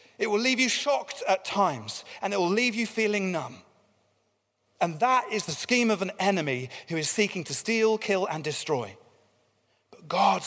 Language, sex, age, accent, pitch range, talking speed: English, male, 30-49, British, 200-255 Hz, 185 wpm